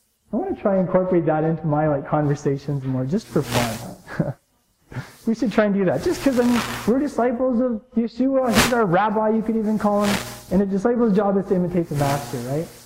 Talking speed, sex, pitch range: 220 wpm, male, 155-210 Hz